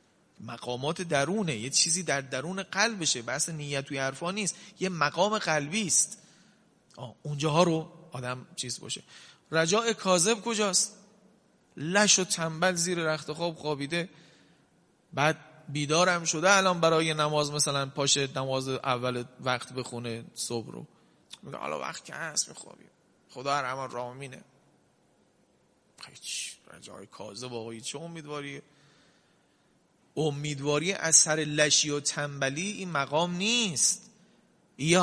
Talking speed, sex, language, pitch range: 120 wpm, male, Persian, 140-195 Hz